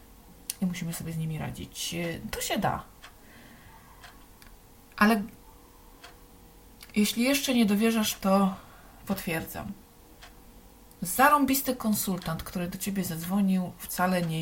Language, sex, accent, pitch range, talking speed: Polish, female, native, 165-200 Hz, 100 wpm